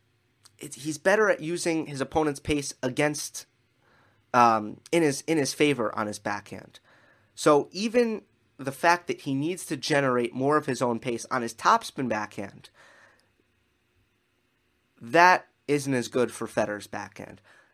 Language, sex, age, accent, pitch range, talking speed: English, male, 30-49, American, 120-160 Hz, 140 wpm